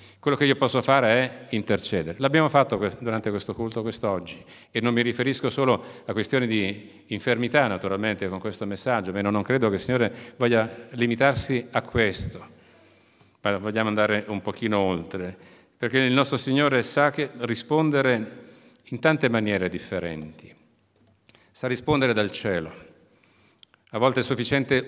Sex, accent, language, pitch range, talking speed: male, native, Italian, 105-130 Hz, 145 wpm